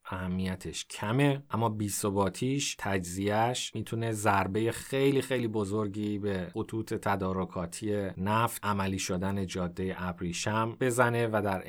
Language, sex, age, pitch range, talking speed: Persian, male, 30-49, 100-115 Hz, 115 wpm